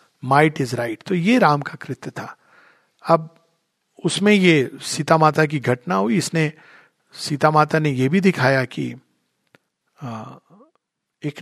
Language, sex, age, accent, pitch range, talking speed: Hindi, male, 50-69, native, 145-190 Hz, 135 wpm